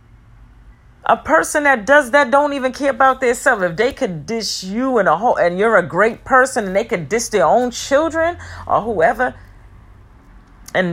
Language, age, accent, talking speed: English, 40-59, American, 185 wpm